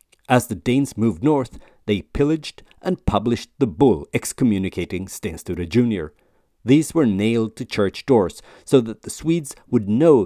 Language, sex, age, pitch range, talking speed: English, male, 50-69, 90-130 Hz, 150 wpm